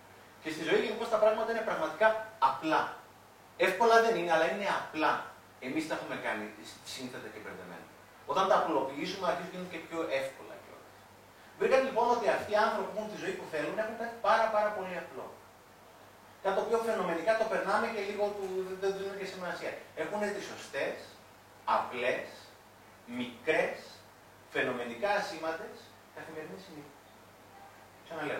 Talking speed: 150 wpm